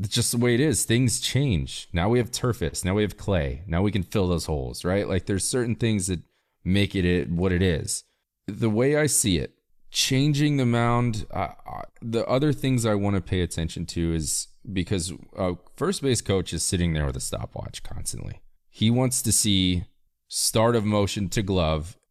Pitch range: 85-110 Hz